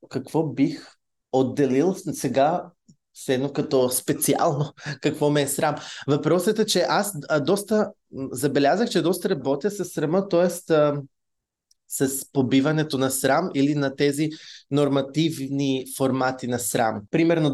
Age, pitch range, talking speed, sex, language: 20-39, 125-155 Hz, 120 wpm, male, Bulgarian